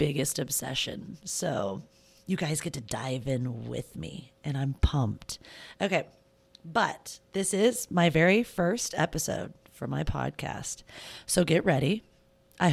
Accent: American